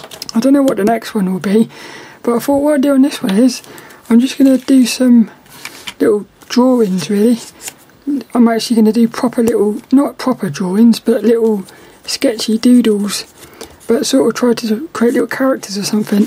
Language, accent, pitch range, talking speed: English, British, 225-260 Hz, 190 wpm